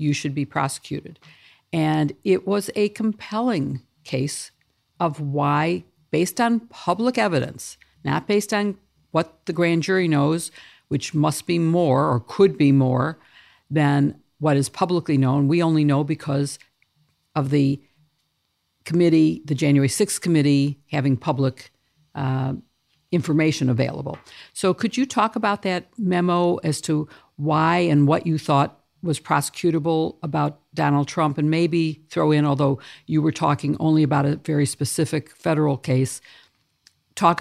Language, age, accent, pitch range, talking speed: English, 50-69, American, 140-165 Hz, 140 wpm